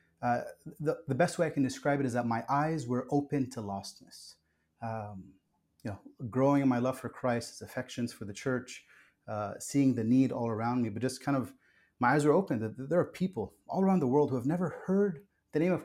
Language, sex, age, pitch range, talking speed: English, male, 30-49, 110-135 Hz, 230 wpm